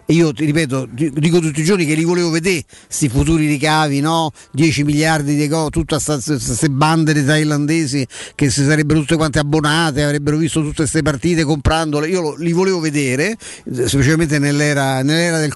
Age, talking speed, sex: 50-69, 175 wpm, male